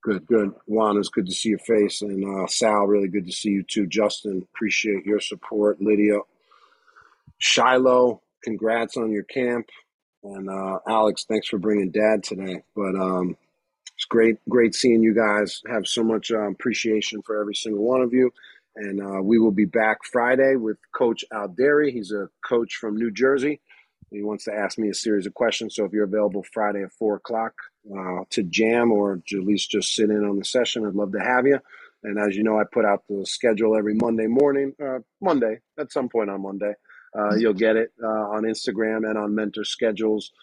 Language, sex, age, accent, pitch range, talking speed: English, male, 40-59, American, 100-115 Hz, 200 wpm